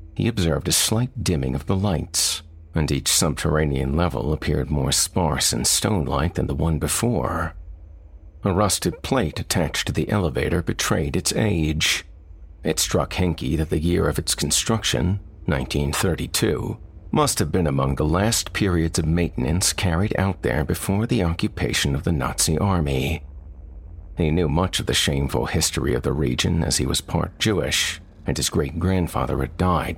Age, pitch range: 50-69, 75-90 Hz